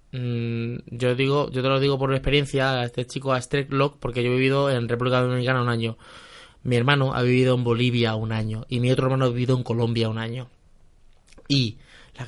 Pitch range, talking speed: 130-160 Hz, 210 wpm